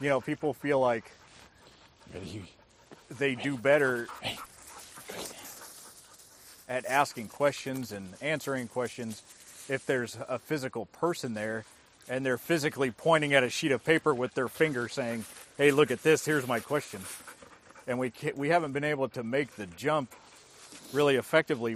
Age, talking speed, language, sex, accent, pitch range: 40-59, 145 wpm, English, male, American, 115-150 Hz